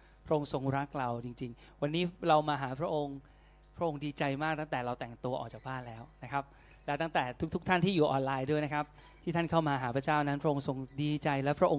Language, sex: Thai, male